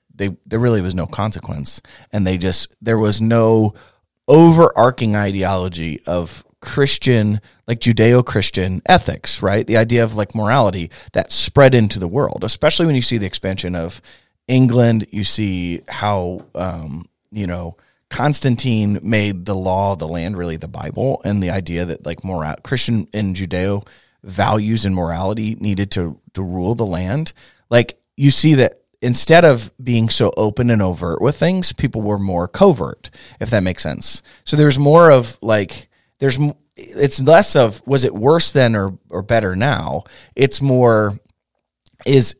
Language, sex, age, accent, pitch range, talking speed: English, male, 30-49, American, 95-125 Hz, 160 wpm